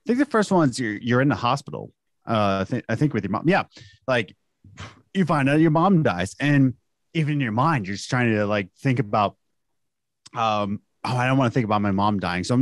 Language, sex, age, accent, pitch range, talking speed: English, male, 30-49, American, 110-160 Hz, 240 wpm